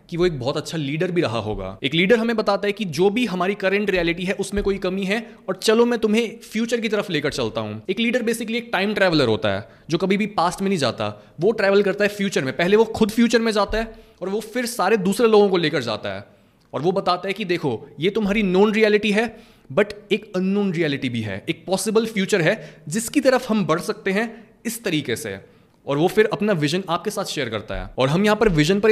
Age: 20-39